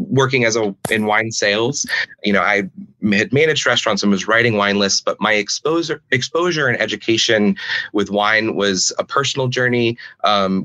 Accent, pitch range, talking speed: American, 105-135 Hz, 170 wpm